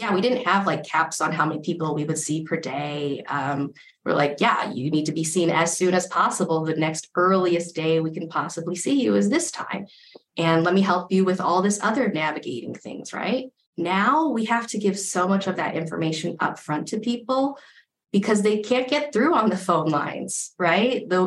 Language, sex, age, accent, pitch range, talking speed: English, female, 20-39, American, 160-200 Hz, 215 wpm